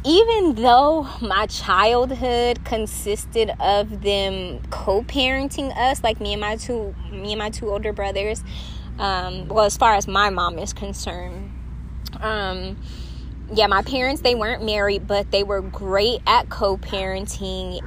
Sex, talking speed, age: female, 140 wpm, 20-39